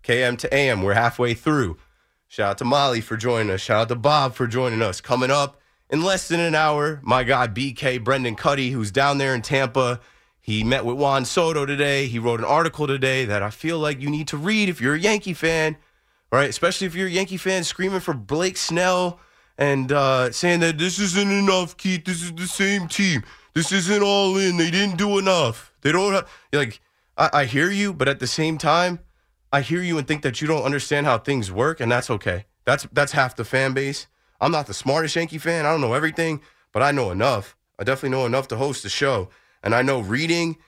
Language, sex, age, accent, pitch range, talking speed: English, male, 30-49, American, 120-170 Hz, 225 wpm